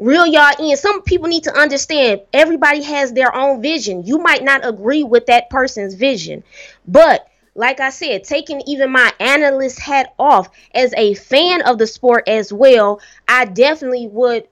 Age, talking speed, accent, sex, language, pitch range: 20-39, 175 wpm, American, female, English, 235-285 Hz